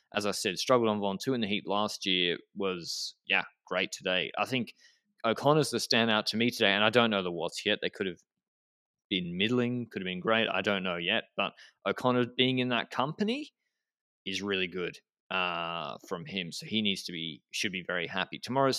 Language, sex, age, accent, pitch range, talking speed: English, male, 20-39, Australian, 95-115 Hz, 210 wpm